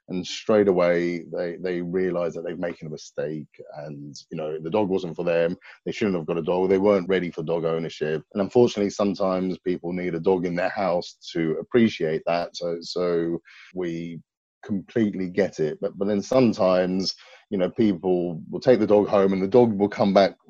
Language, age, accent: English, 30-49, British